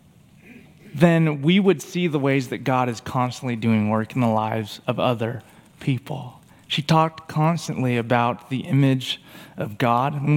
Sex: male